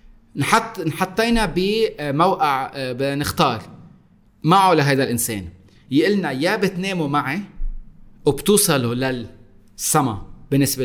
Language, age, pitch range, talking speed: Arabic, 30-49, 125-180 Hz, 85 wpm